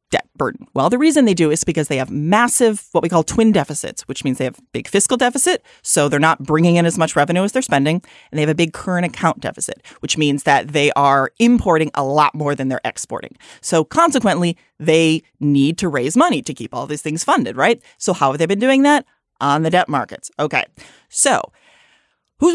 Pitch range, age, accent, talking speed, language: 155-230 Hz, 30-49, American, 220 wpm, English